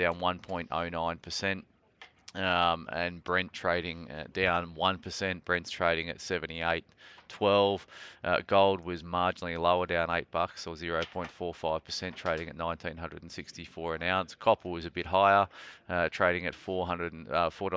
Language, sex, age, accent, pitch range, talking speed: English, male, 30-49, Australian, 85-90 Hz, 110 wpm